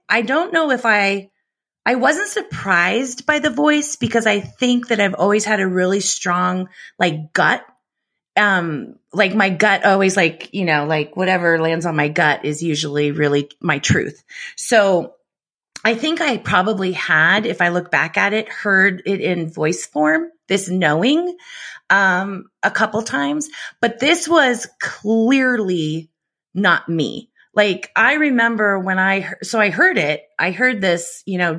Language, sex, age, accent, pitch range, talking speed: French, female, 30-49, American, 175-235 Hz, 165 wpm